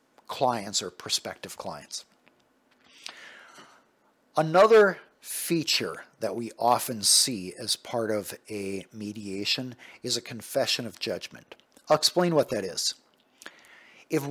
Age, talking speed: 50-69, 110 wpm